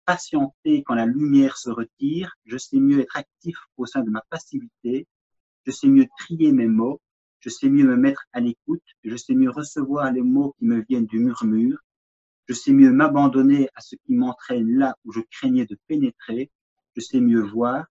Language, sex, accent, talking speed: French, male, French, 195 wpm